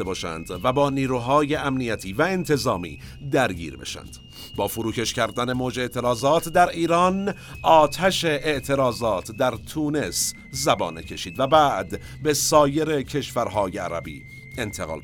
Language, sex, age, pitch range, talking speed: Persian, male, 50-69, 115-145 Hz, 115 wpm